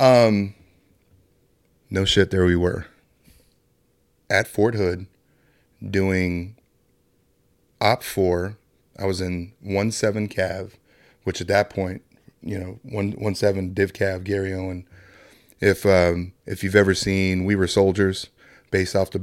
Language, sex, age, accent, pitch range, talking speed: English, male, 30-49, American, 90-100 Hz, 135 wpm